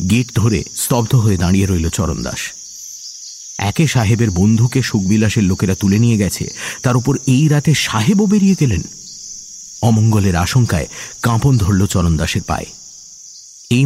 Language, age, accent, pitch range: English, 50-69, Indian, 90-120 Hz